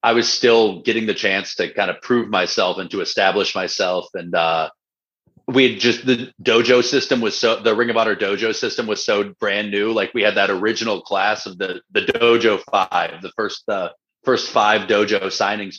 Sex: male